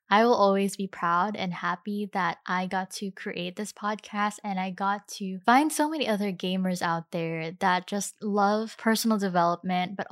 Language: English